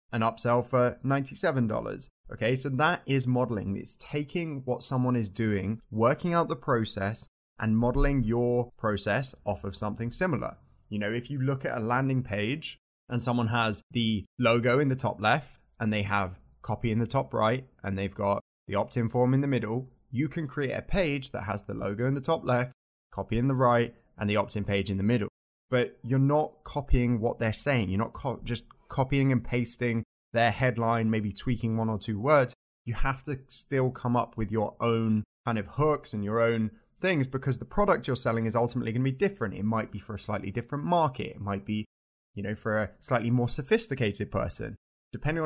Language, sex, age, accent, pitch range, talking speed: English, male, 20-39, British, 110-135 Hz, 205 wpm